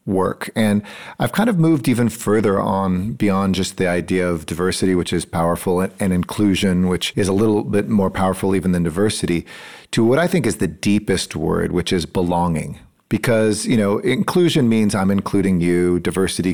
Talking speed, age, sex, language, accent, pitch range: 185 wpm, 40-59, male, English, American, 90-105 Hz